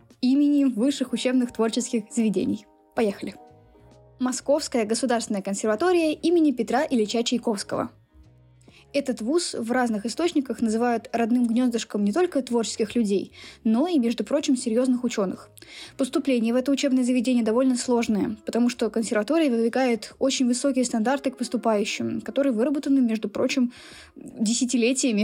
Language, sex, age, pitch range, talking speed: Russian, female, 10-29, 225-270 Hz, 125 wpm